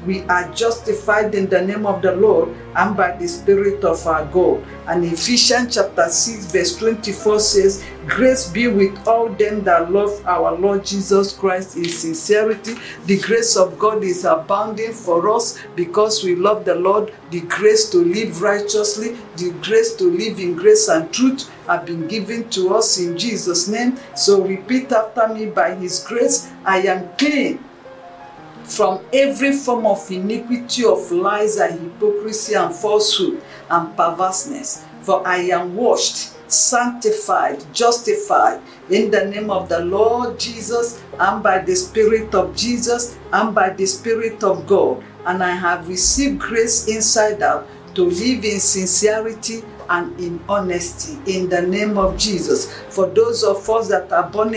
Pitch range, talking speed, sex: 185-230 Hz, 160 wpm, female